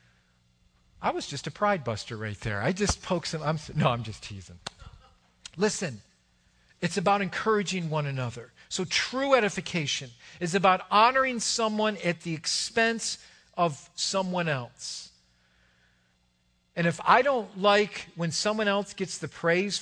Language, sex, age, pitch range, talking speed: English, male, 50-69, 120-190 Hz, 140 wpm